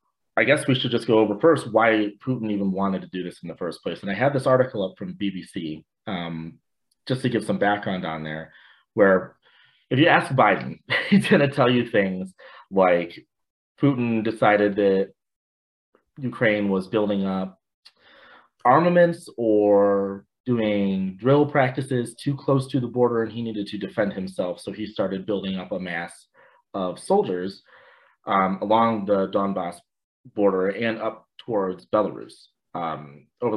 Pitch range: 95-115 Hz